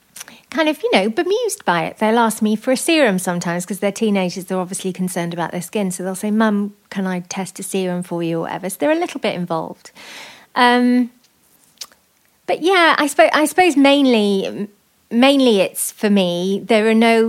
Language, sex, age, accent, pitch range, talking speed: English, female, 40-59, British, 185-220 Hz, 200 wpm